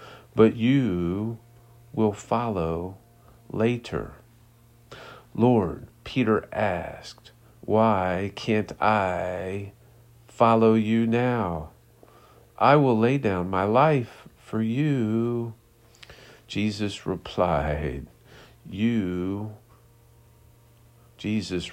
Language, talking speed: English, 70 wpm